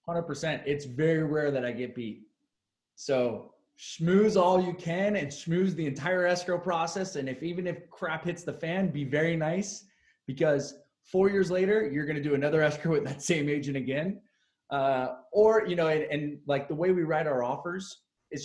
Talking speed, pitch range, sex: 195 wpm, 140-175 Hz, male